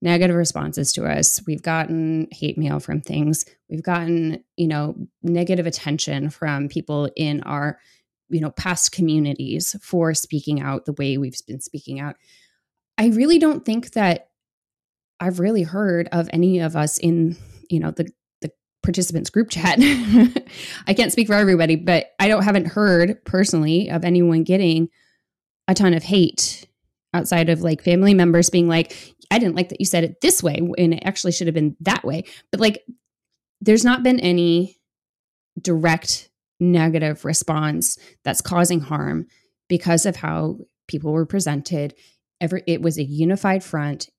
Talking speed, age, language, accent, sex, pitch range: 160 wpm, 20-39, English, American, female, 160-185 Hz